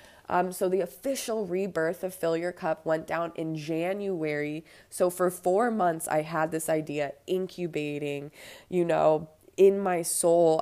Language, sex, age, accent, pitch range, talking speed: English, female, 20-39, American, 160-185 Hz, 155 wpm